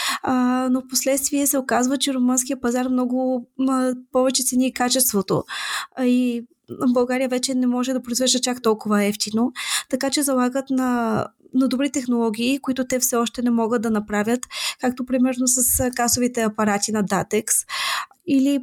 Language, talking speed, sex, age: Bulgarian, 150 wpm, female, 20-39